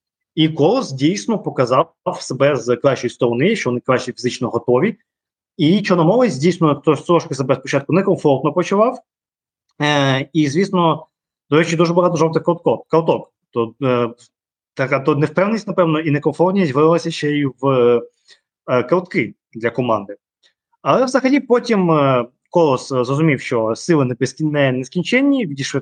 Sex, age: male, 20-39